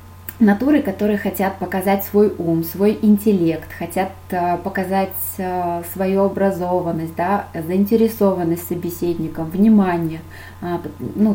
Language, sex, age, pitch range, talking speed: Russian, female, 20-39, 175-205 Hz, 90 wpm